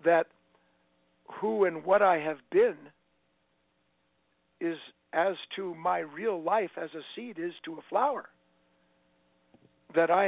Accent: American